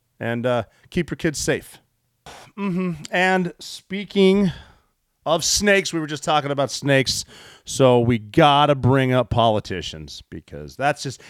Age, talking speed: 40-59, 150 wpm